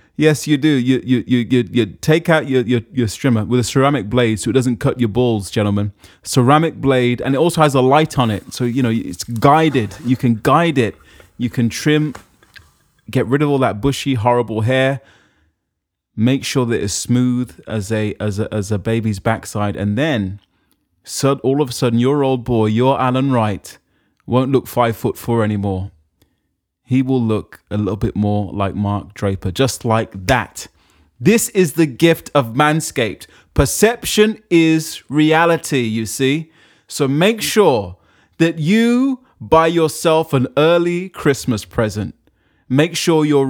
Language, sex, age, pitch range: English, male, 20-39, 110-155 Hz